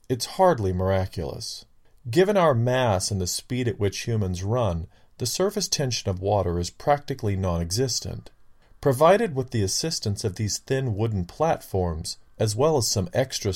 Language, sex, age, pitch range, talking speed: English, male, 40-59, 95-130 Hz, 155 wpm